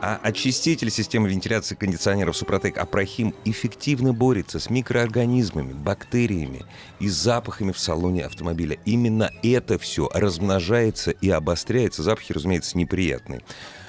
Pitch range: 85-120 Hz